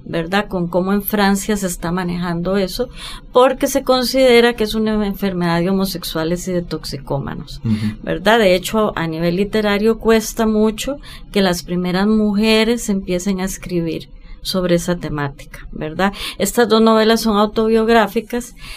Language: English